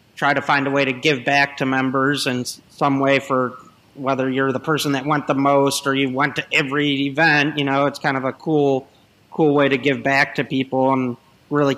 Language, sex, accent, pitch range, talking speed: English, male, American, 130-150 Hz, 225 wpm